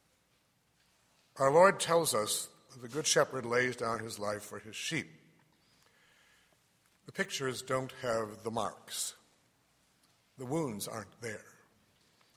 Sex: male